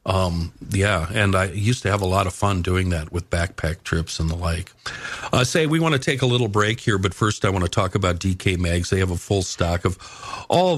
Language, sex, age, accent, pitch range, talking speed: English, male, 50-69, American, 90-105 Hz, 250 wpm